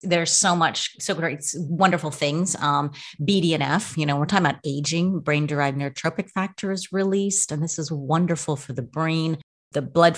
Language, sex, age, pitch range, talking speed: English, female, 30-49, 145-170 Hz, 165 wpm